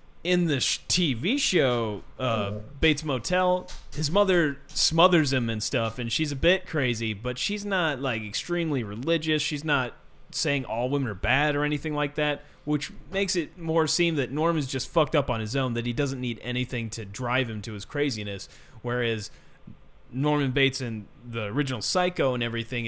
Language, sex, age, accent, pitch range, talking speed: English, male, 30-49, American, 110-155 Hz, 185 wpm